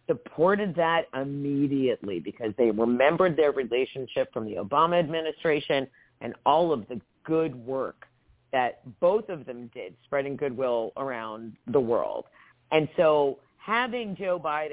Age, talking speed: 40-59, 135 wpm